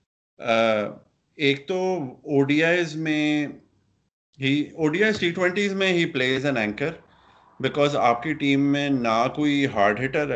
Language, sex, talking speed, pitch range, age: Urdu, male, 155 wpm, 110-150 Hz, 30-49